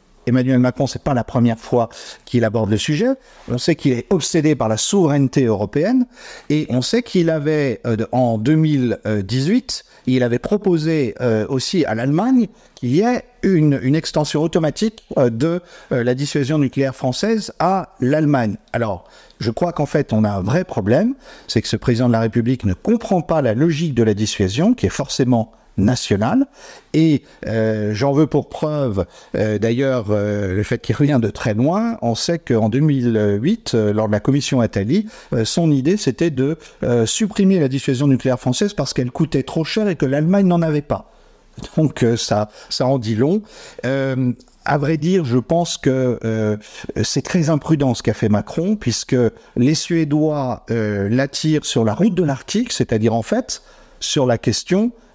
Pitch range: 115-165 Hz